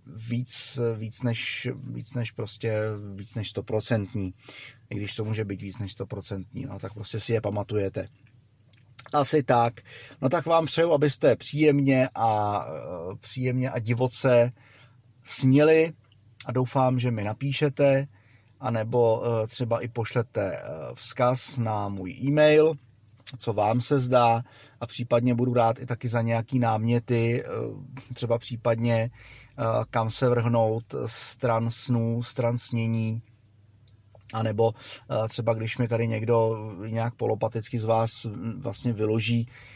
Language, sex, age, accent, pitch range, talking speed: Czech, male, 30-49, native, 110-125 Hz, 120 wpm